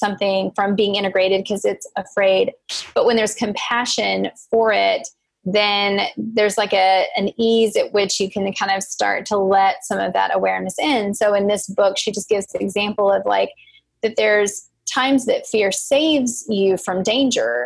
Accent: American